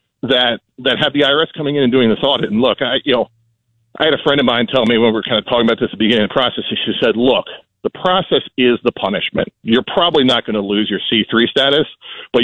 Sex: male